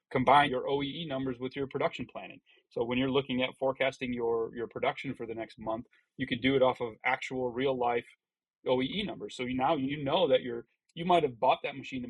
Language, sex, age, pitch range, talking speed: English, male, 30-49, 120-135 Hz, 230 wpm